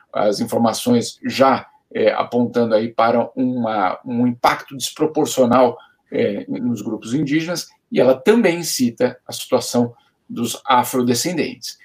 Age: 50-69